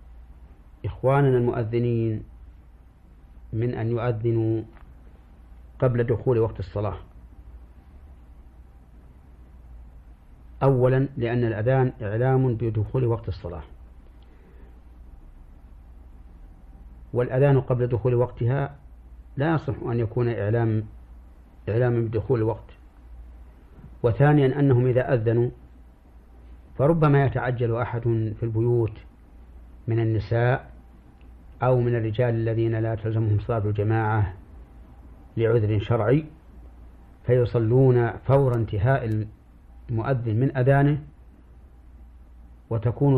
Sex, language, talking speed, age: male, Arabic, 80 wpm, 50-69